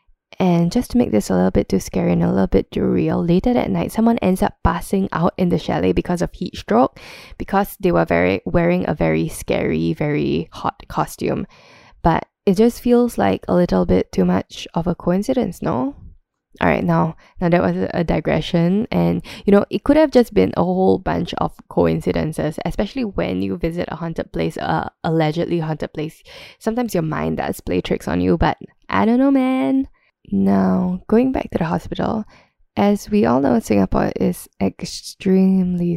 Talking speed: 190 wpm